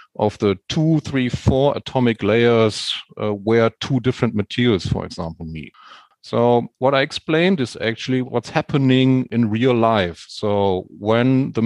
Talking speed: 150 wpm